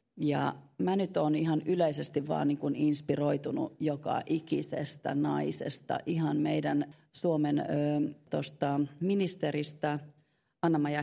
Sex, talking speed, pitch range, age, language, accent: female, 110 wpm, 145-170 Hz, 30-49, Finnish, native